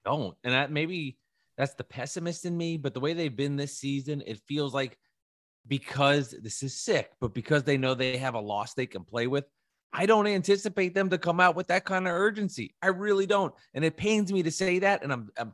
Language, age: English, 30-49